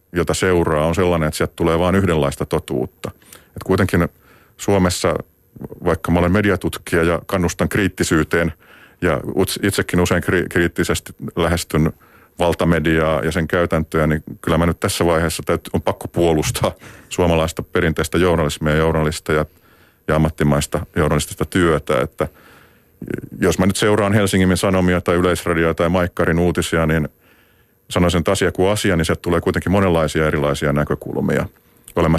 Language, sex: Finnish, male